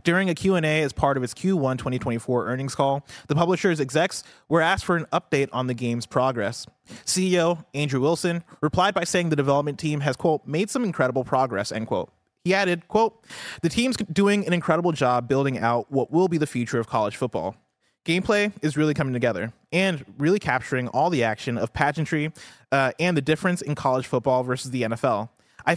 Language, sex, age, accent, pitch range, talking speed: English, male, 30-49, American, 125-170 Hz, 195 wpm